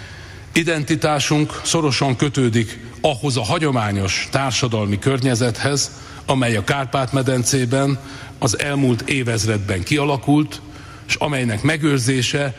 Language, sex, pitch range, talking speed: Hungarian, male, 110-140 Hz, 85 wpm